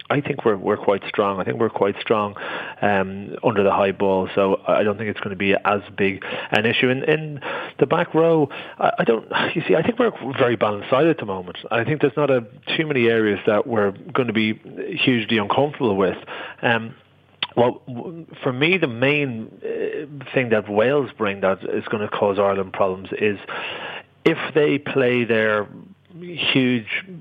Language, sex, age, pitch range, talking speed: English, male, 30-49, 100-130 Hz, 190 wpm